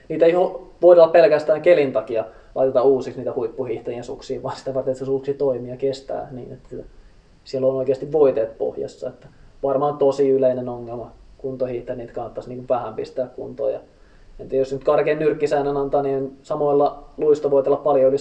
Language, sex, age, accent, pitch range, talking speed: Finnish, male, 20-39, native, 130-150 Hz, 160 wpm